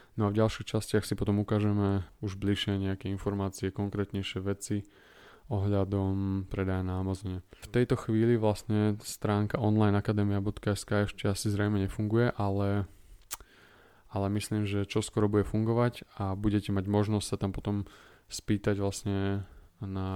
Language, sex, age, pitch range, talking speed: Slovak, male, 20-39, 95-105 Hz, 130 wpm